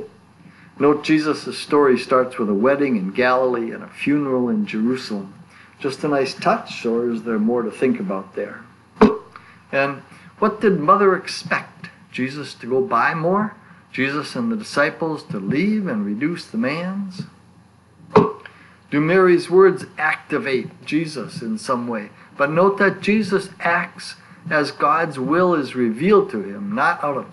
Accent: American